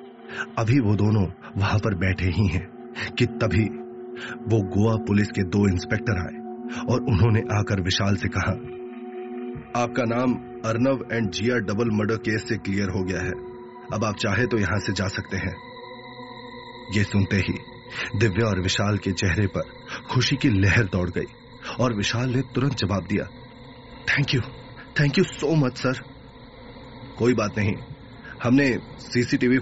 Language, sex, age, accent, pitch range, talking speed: Hindi, male, 30-49, native, 100-125 Hz, 155 wpm